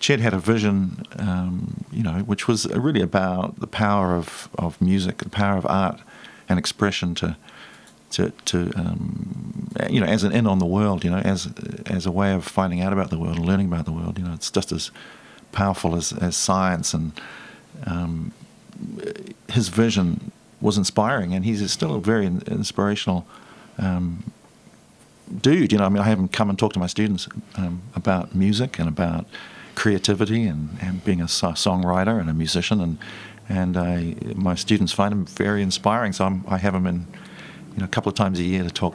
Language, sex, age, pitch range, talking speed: English, male, 50-69, 90-110 Hz, 195 wpm